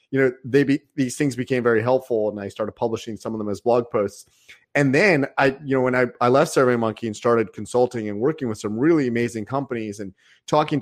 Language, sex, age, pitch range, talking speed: English, male, 30-49, 110-140 Hz, 225 wpm